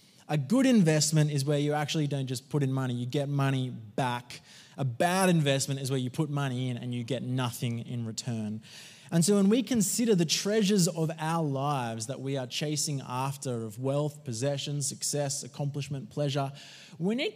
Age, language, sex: 20-39, English, male